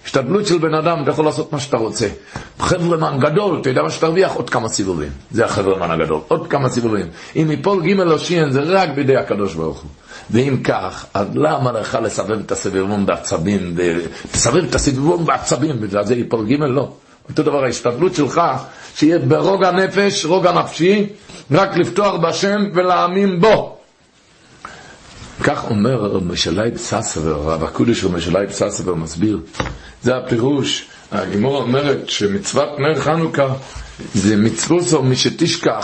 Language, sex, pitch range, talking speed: Hebrew, male, 110-170 Hz, 150 wpm